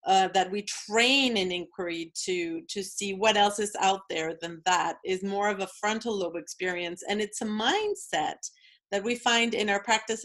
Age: 40-59